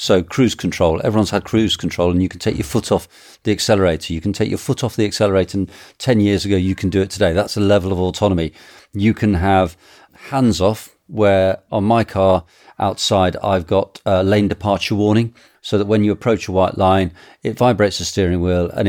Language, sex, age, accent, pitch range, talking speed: English, male, 40-59, British, 90-105 Hz, 215 wpm